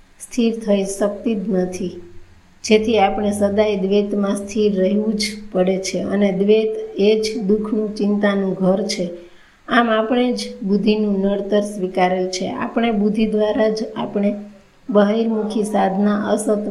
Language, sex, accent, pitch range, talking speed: Gujarati, female, native, 195-220 Hz, 110 wpm